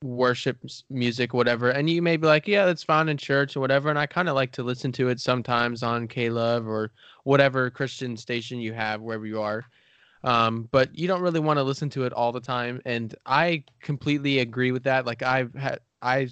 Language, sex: English, male